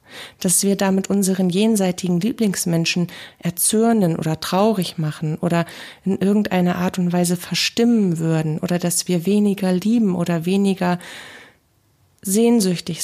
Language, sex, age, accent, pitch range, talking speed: German, female, 40-59, German, 175-210 Hz, 120 wpm